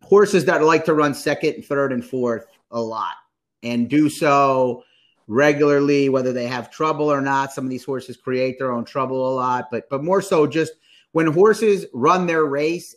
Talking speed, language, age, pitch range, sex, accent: 195 wpm, English, 30-49, 125-160 Hz, male, American